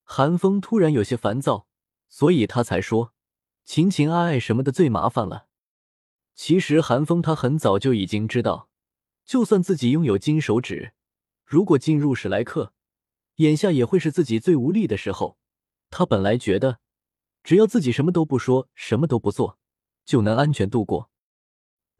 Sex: male